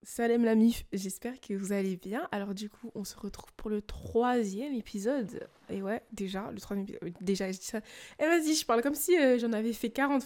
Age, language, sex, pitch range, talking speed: 20-39, French, female, 195-245 Hz, 220 wpm